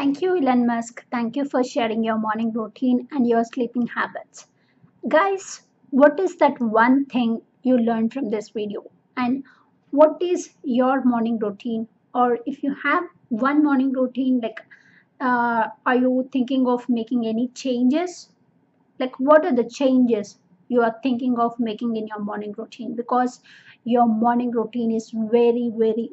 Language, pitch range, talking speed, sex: Telugu, 230-275 Hz, 160 wpm, female